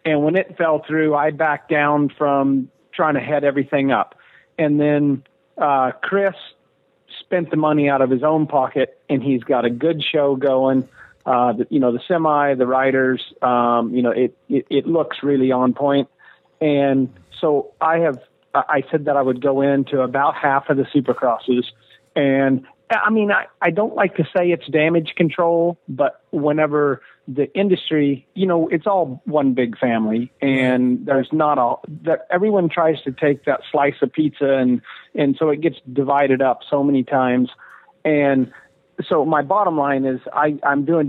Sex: male